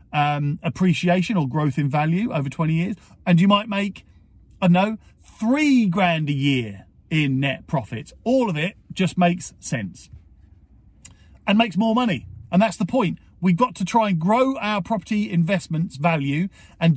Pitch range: 140-195 Hz